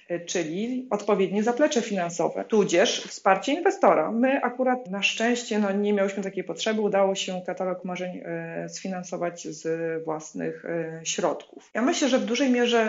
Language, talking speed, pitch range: Polish, 140 wpm, 180-225 Hz